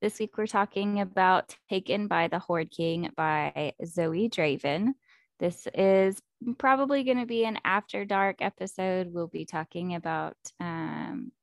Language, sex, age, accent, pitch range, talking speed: English, female, 20-39, American, 175-210 Hz, 145 wpm